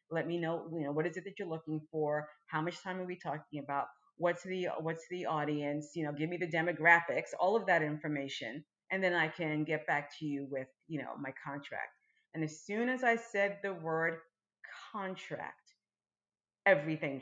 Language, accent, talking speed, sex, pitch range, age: English, American, 200 wpm, female, 145-170 Hz, 40-59